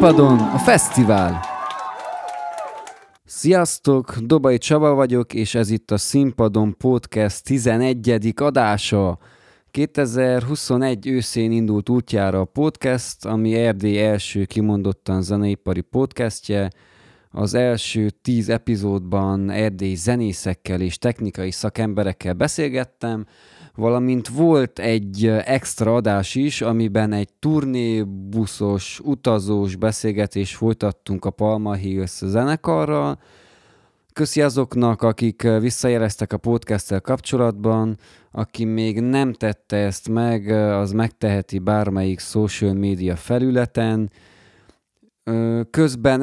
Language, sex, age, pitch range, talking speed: Hungarian, male, 20-39, 100-125 Hz, 95 wpm